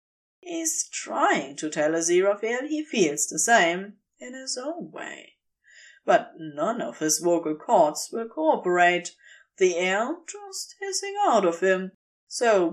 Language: English